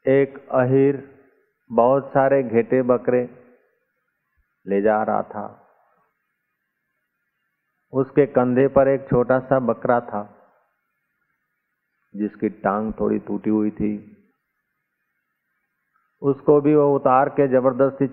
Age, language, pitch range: 40-59, Hindi, 105-135 Hz